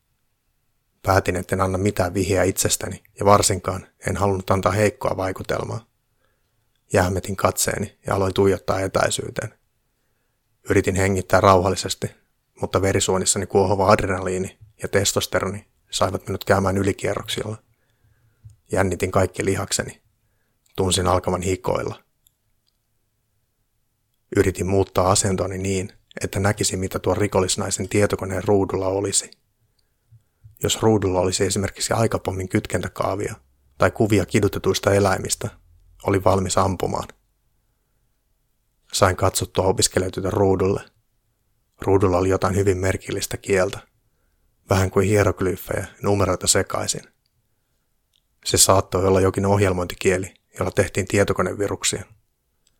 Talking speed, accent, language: 100 wpm, native, Finnish